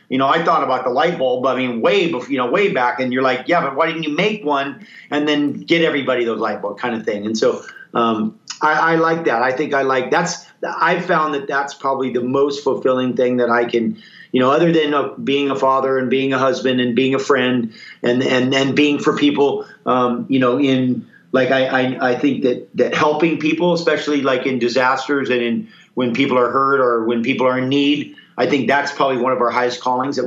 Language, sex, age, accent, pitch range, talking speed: English, male, 40-59, American, 125-150 Hz, 240 wpm